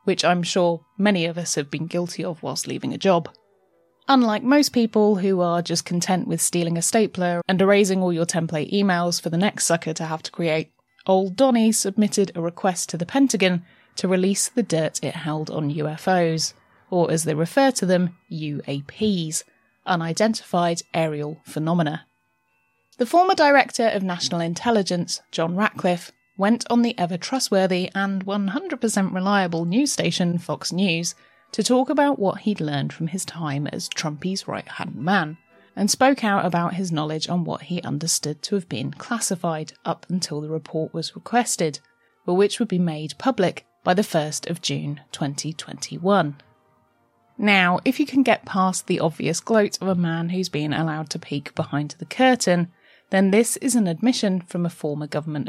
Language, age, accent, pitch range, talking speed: English, 20-39, British, 160-200 Hz, 170 wpm